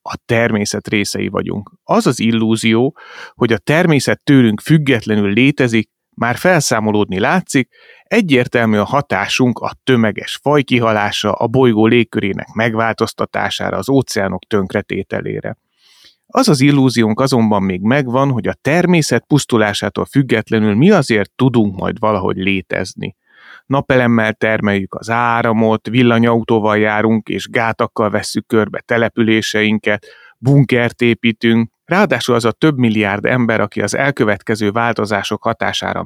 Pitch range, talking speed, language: 105-130 Hz, 120 wpm, Hungarian